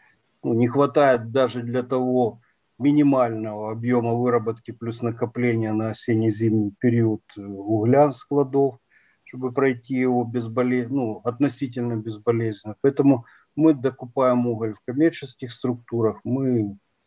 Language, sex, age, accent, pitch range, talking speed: Ukrainian, male, 50-69, native, 115-135 Hz, 110 wpm